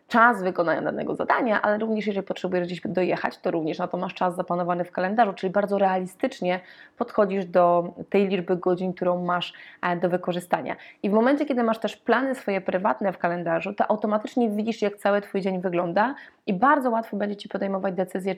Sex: female